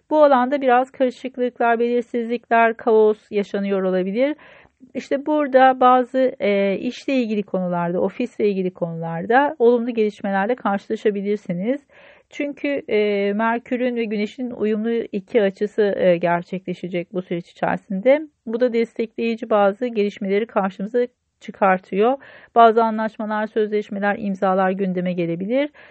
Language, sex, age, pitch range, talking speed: Turkish, female, 40-59, 195-245 Hz, 110 wpm